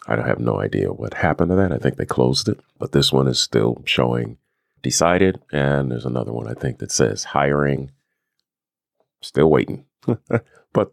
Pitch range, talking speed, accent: 65-90 Hz, 175 wpm, American